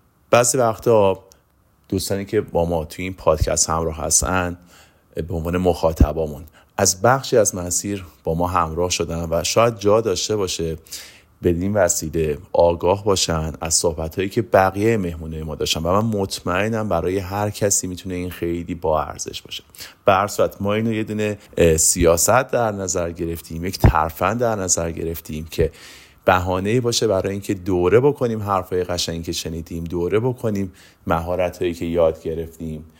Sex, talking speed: male, 150 wpm